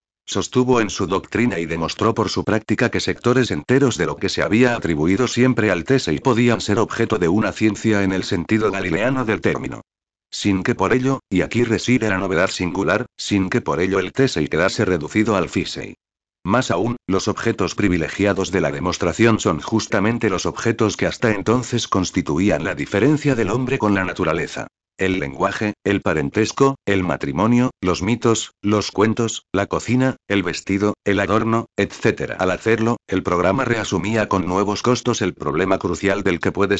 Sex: male